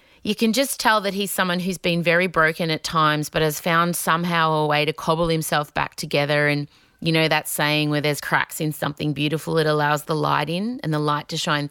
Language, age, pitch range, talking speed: English, 30-49, 160-215 Hz, 230 wpm